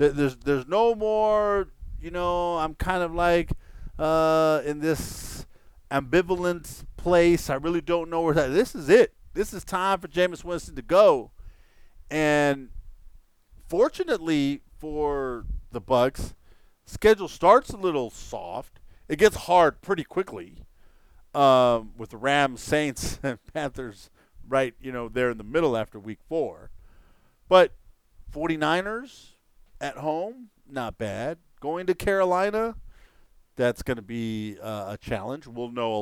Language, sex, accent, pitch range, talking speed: English, male, American, 110-165 Hz, 135 wpm